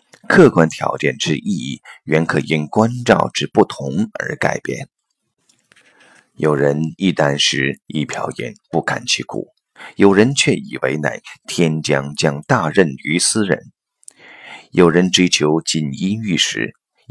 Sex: male